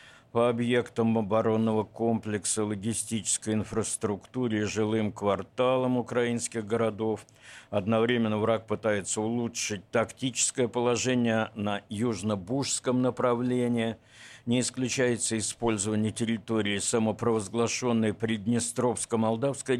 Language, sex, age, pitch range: Russian, male, 60-79, 110-125 Hz